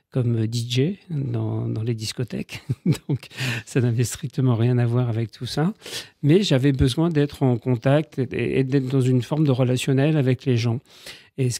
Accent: French